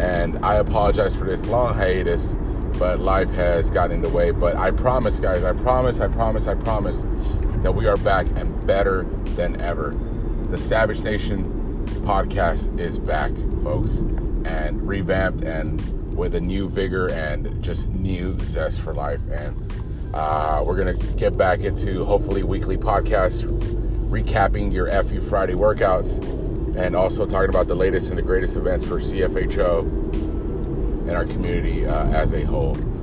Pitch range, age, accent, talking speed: 85-110 Hz, 30-49, American, 160 wpm